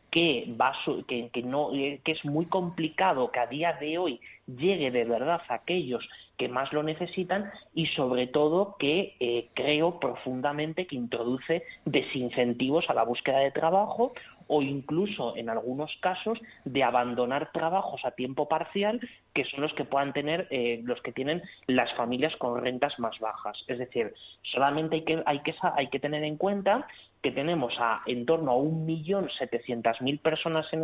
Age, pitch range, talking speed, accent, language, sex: 30-49, 125-170 Hz, 165 wpm, Spanish, Spanish, male